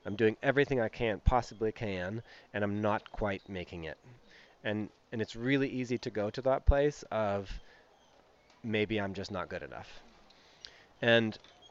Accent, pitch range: American, 100-120 Hz